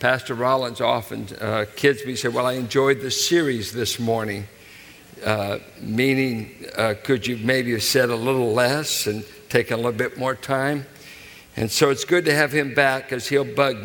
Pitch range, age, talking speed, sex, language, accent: 120-160 Hz, 60-79, 185 wpm, male, English, American